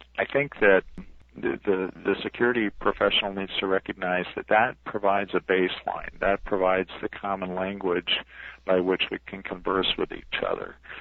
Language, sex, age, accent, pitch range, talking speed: English, male, 50-69, American, 90-105 Hz, 160 wpm